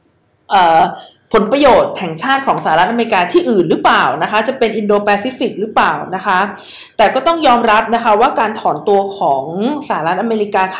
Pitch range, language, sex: 195-245 Hz, Thai, female